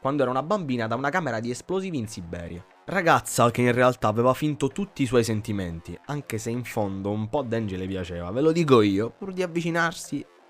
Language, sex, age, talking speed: Italian, male, 20-39, 210 wpm